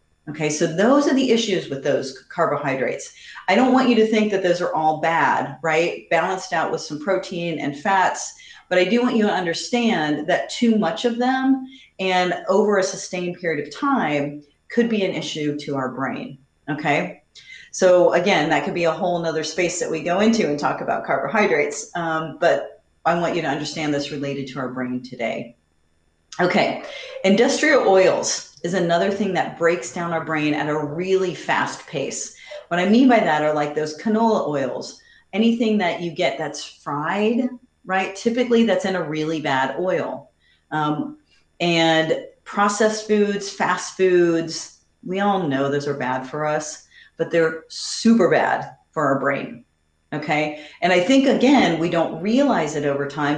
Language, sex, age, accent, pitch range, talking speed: English, female, 40-59, American, 150-205 Hz, 175 wpm